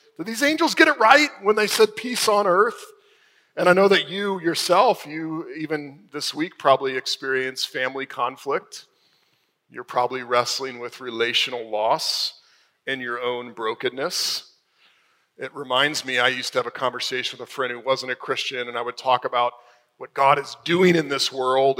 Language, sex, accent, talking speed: English, male, American, 175 wpm